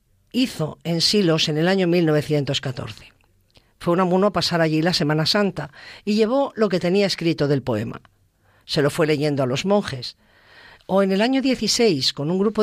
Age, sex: 50-69, female